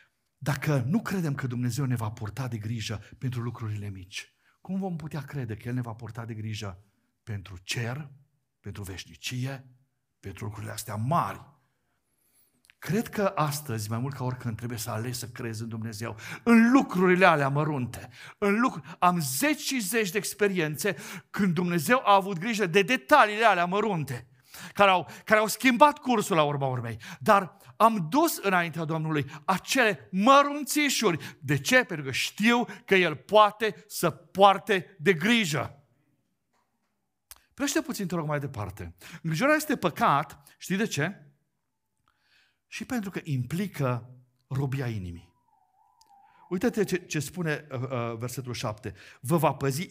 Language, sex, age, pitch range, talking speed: Romanian, male, 50-69, 125-200 Hz, 145 wpm